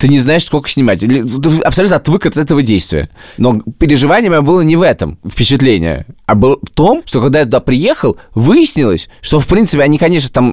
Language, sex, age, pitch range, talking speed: Russian, male, 20-39, 110-145 Hz, 195 wpm